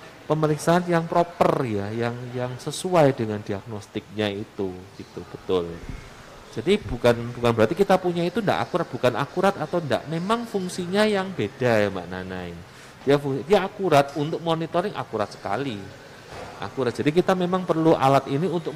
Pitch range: 120-175 Hz